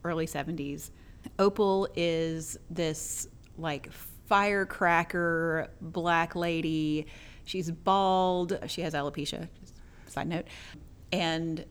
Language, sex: English, female